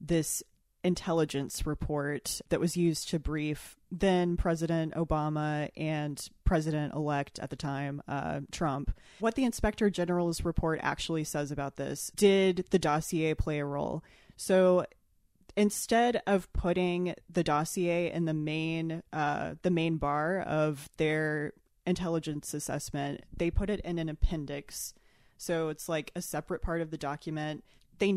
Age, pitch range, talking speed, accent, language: 20-39, 150-175 Hz, 140 wpm, American, English